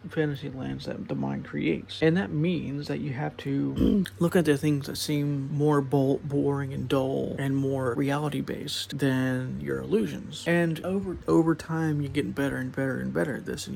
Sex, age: male, 40-59